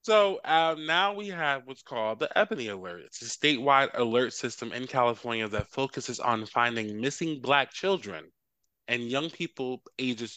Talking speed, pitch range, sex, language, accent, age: 160 wpm, 115-145 Hz, male, English, American, 20-39